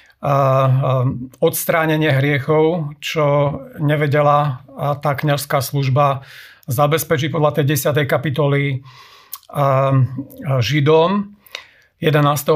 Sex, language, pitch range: male, Slovak, 135-155 Hz